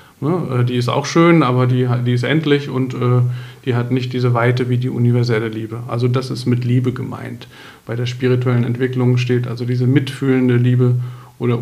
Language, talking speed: German, 175 wpm